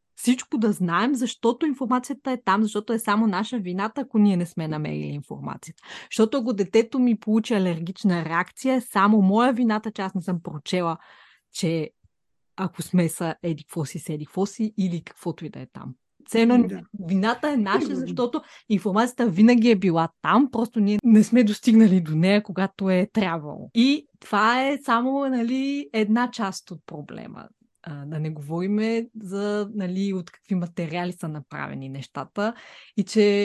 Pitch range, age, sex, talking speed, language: 175-230 Hz, 20-39, female, 160 wpm, Bulgarian